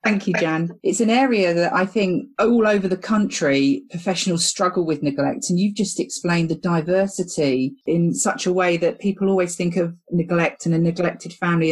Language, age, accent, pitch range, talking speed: English, 40-59, British, 160-195 Hz, 190 wpm